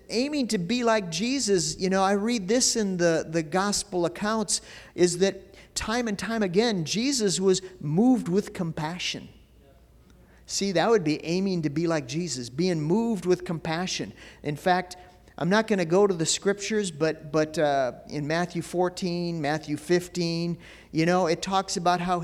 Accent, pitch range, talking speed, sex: American, 150-200 Hz, 170 wpm, male